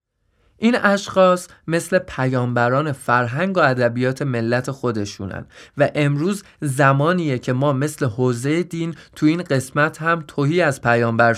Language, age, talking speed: Persian, 20-39, 125 wpm